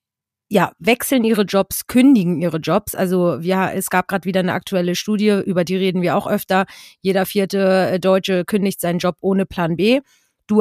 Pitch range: 185-215 Hz